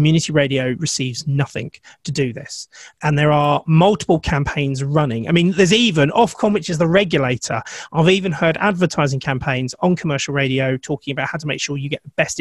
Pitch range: 140-175 Hz